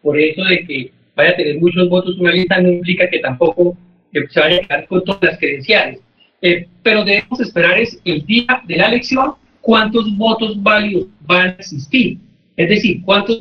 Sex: male